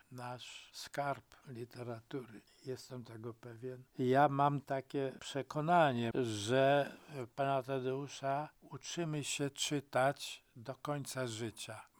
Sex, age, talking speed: male, 60-79, 95 wpm